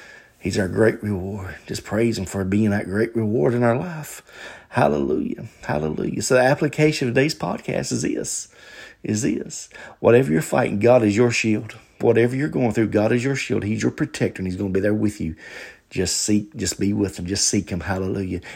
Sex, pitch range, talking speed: male, 90-110 Hz, 200 wpm